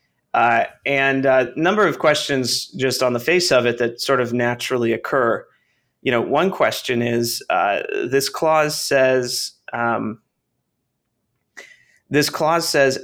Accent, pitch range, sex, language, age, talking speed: American, 120-145 Hz, male, English, 30-49, 145 wpm